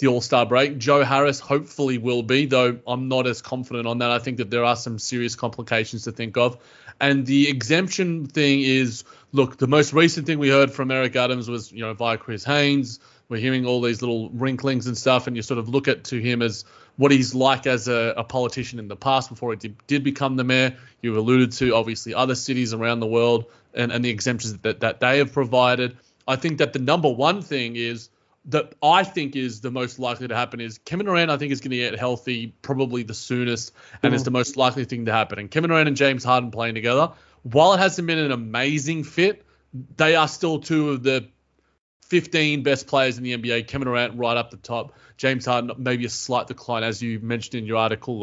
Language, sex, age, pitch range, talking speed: English, male, 30-49, 120-140 Hz, 225 wpm